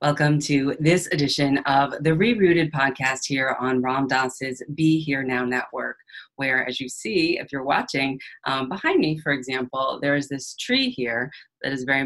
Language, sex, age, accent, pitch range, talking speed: English, female, 30-49, American, 130-155 Hz, 180 wpm